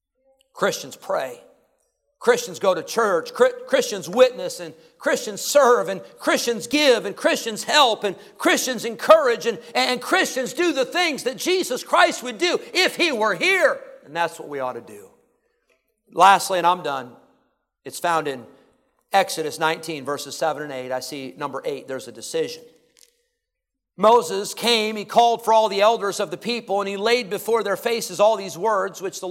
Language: English